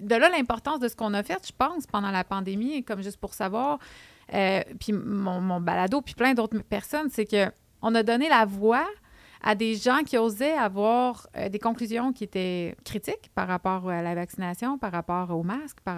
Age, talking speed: 30-49, 205 wpm